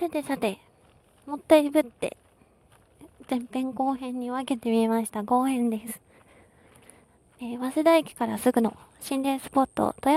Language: Japanese